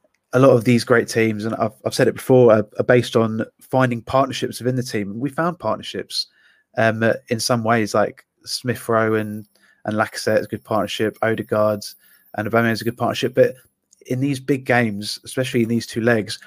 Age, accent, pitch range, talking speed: 20-39, British, 110-125 Hz, 195 wpm